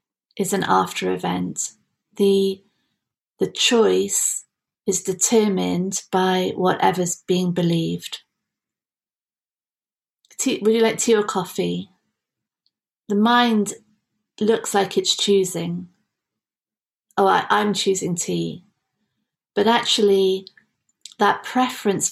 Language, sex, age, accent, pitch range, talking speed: English, female, 40-59, British, 180-215 Hz, 90 wpm